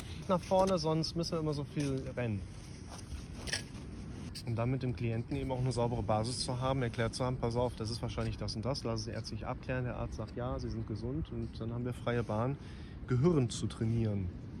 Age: 30-49